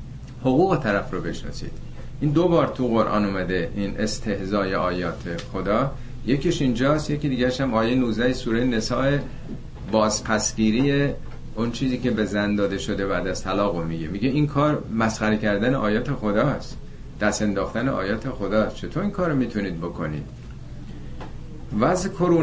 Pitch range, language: 110-140 Hz, Persian